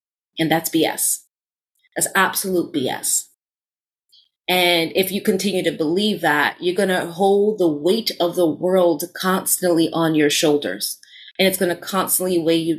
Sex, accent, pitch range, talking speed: female, American, 165-195 Hz, 155 wpm